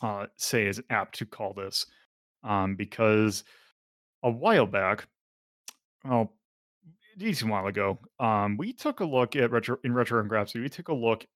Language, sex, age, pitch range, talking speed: English, male, 30-49, 105-135 Hz, 170 wpm